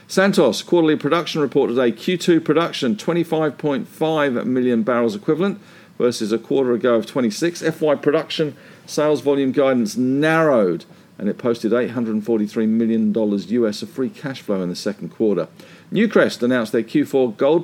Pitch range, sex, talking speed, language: 115-160 Hz, male, 145 wpm, English